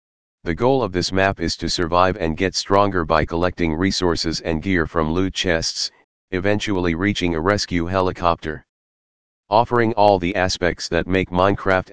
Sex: male